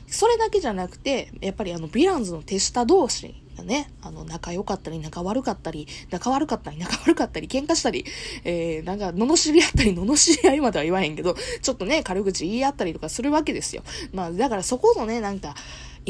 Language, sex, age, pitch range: Japanese, female, 20-39, 180-285 Hz